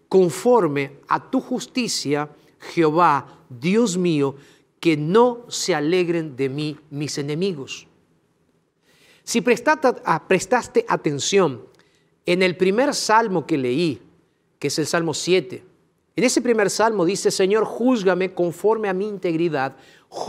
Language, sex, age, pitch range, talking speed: Spanish, male, 40-59, 165-225 Hz, 120 wpm